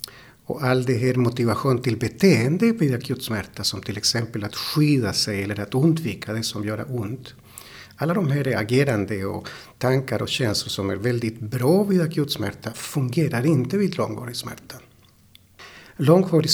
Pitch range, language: 115-140 Hz, Swedish